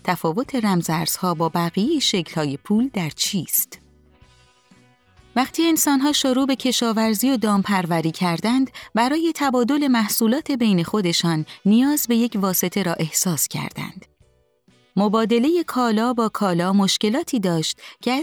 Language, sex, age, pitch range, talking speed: Persian, female, 30-49, 175-250 Hz, 120 wpm